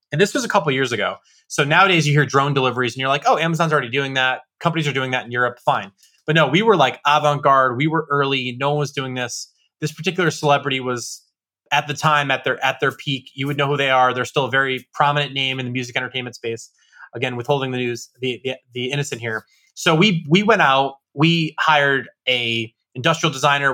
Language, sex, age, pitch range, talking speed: English, male, 20-39, 125-155 Hz, 230 wpm